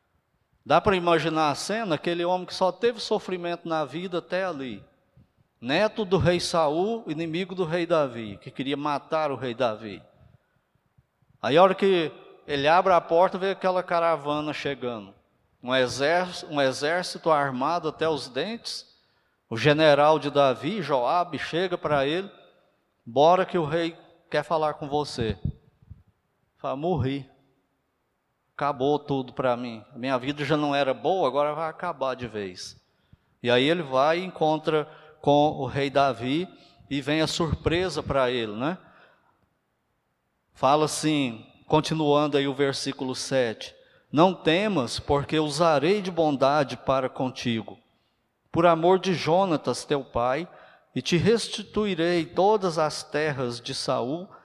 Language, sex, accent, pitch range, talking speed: Portuguese, male, Brazilian, 135-175 Hz, 140 wpm